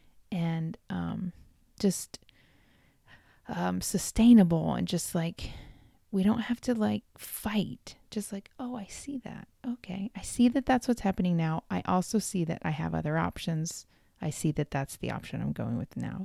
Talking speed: 170 wpm